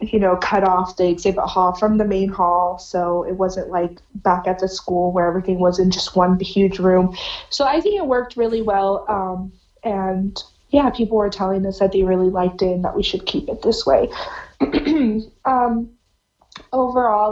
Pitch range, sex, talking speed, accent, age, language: 190-225 Hz, female, 195 wpm, American, 30-49, English